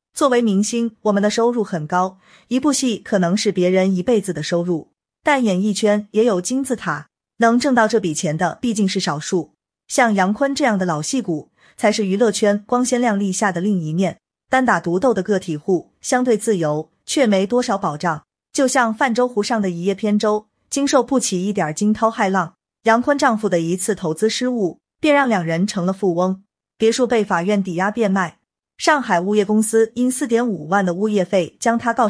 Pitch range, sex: 180-230 Hz, female